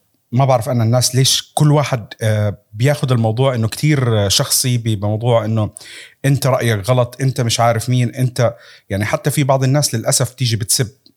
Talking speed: 160 wpm